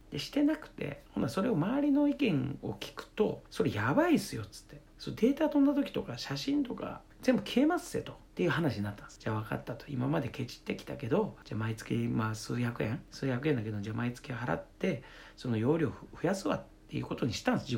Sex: male